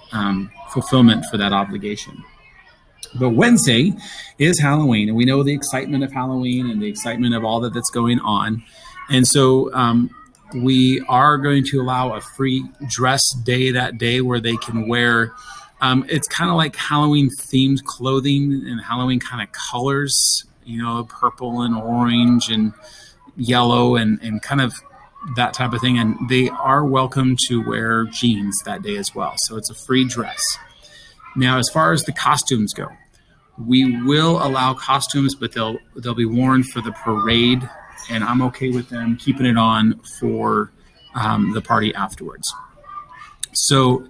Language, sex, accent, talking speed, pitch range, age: English, male, American, 165 wpm, 115-135 Hz, 30-49